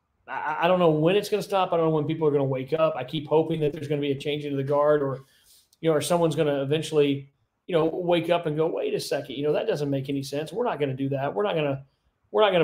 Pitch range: 140-170 Hz